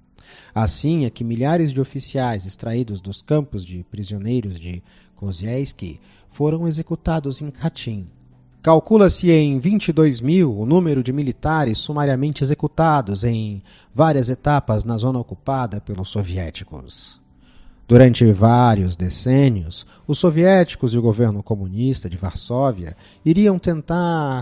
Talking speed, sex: 120 wpm, male